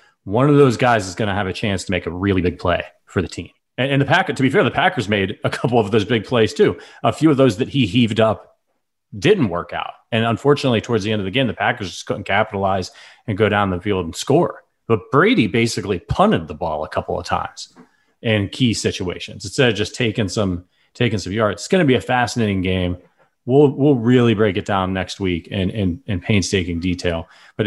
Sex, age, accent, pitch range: male, 30-49, American, 90-115 Hz